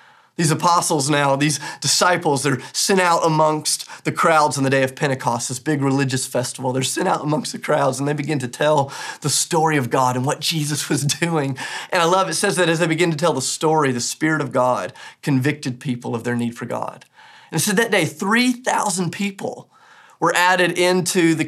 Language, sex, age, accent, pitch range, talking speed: English, male, 30-49, American, 140-190 Hz, 210 wpm